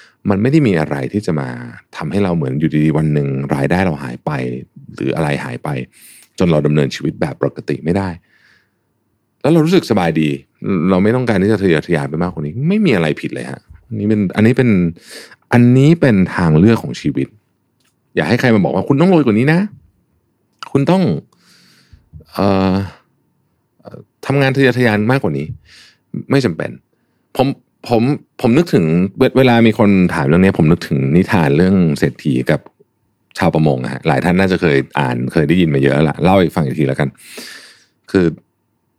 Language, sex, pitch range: Thai, male, 75-115 Hz